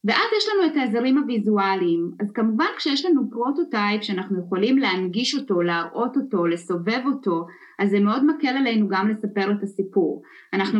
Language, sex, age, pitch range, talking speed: English, female, 20-39, 195-260 Hz, 160 wpm